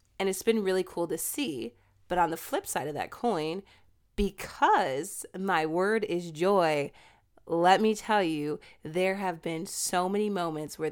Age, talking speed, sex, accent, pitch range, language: 30-49, 170 wpm, female, American, 165-190 Hz, English